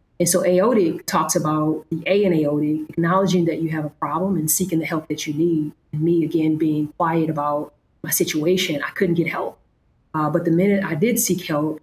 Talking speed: 215 wpm